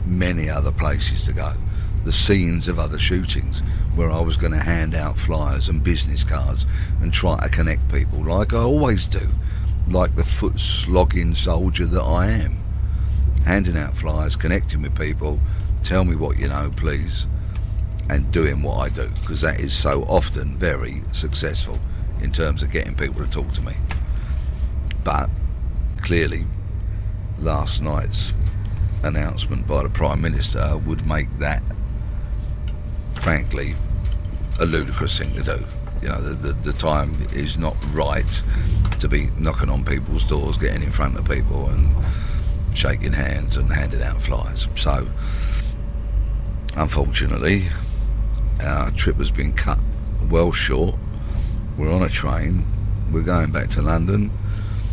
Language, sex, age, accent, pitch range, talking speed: English, male, 50-69, British, 75-95 Hz, 145 wpm